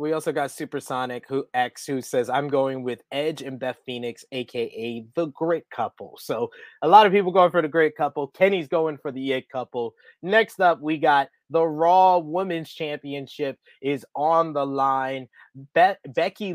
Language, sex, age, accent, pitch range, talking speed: English, male, 20-39, American, 135-165 Hz, 180 wpm